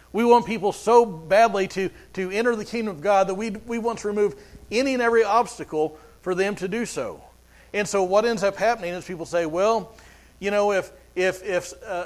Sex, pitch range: male, 160-215 Hz